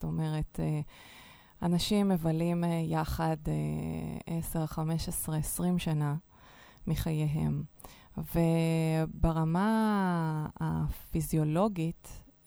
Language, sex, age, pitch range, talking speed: Hebrew, female, 20-39, 155-190 Hz, 60 wpm